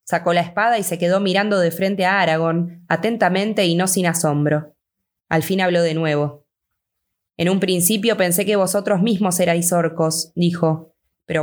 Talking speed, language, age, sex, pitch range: 170 wpm, Spanish, 20-39, female, 160-190 Hz